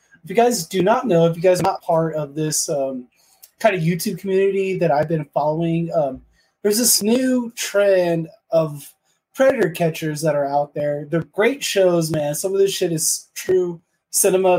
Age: 20-39